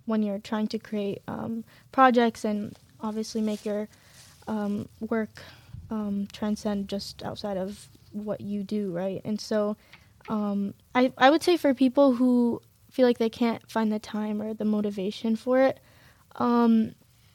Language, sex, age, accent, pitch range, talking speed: English, female, 10-29, American, 215-245 Hz, 155 wpm